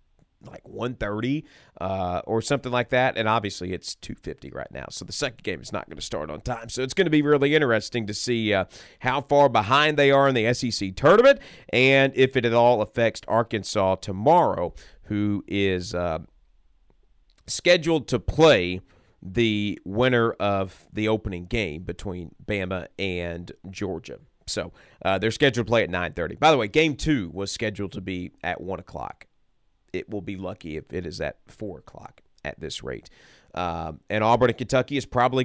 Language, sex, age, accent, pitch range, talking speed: English, male, 40-59, American, 95-125 Hz, 180 wpm